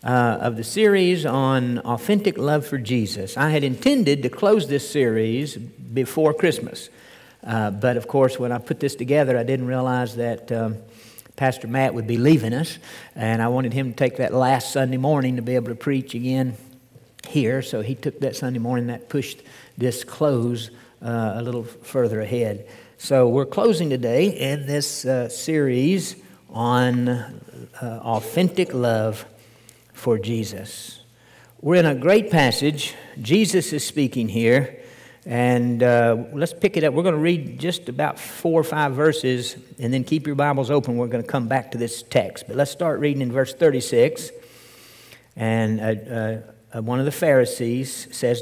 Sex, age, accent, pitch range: male, 60-79, American, 120-150 Hz